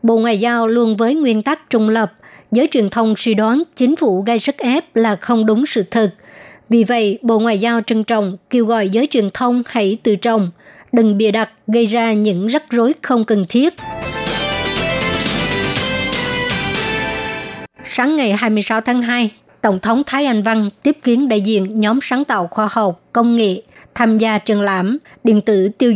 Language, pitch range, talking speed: Vietnamese, 210-240 Hz, 180 wpm